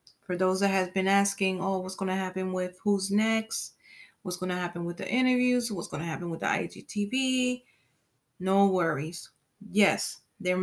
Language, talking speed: English, 180 wpm